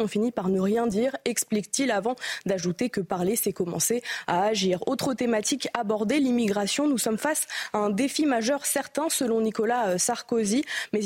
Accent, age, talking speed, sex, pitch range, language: French, 20-39, 170 wpm, female, 200-260 Hz, French